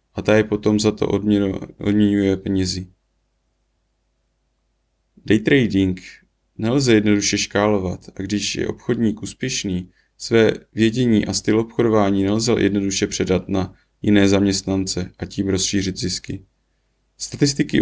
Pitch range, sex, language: 95-105 Hz, male, Czech